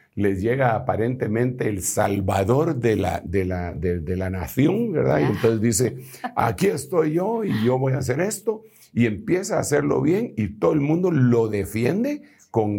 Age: 50-69